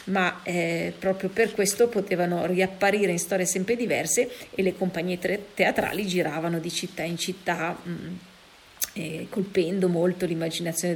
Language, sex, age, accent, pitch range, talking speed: Italian, female, 40-59, native, 175-195 Hz, 130 wpm